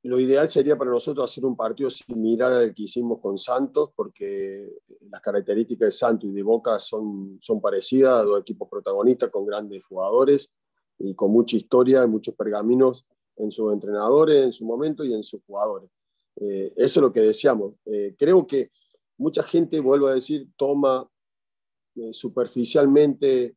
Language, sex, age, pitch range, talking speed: Spanish, male, 40-59, 110-155 Hz, 165 wpm